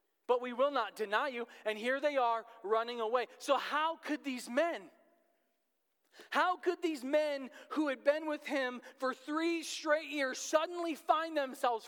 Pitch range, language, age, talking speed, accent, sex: 230-295 Hz, English, 40-59, 165 wpm, American, male